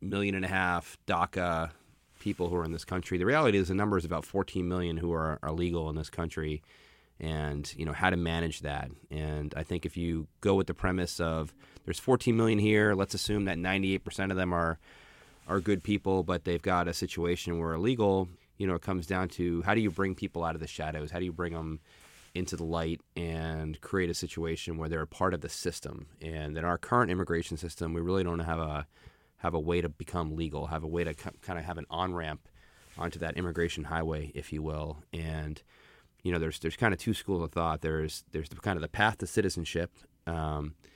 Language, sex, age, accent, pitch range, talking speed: English, male, 30-49, American, 80-90 Hz, 225 wpm